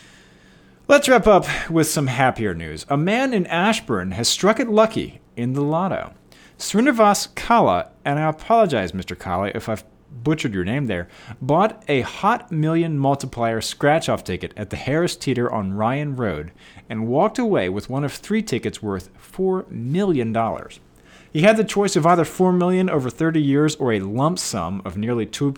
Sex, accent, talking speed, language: male, American, 170 wpm, English